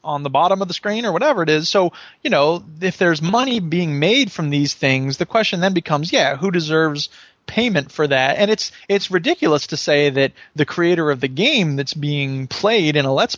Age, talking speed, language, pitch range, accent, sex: 30-49, 220 wpm, English, 140-185 Hz, American, male